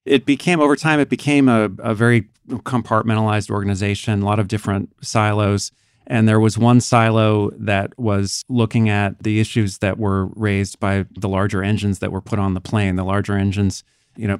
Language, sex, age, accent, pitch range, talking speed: English, male, 30-49, American, 95-110 Hz, 190 wpm